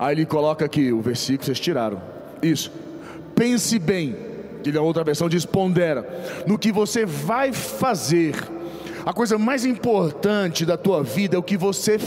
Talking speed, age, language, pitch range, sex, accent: 170 wpm, 40-59, Portuguese, 170-225 Hz, male, Brazilian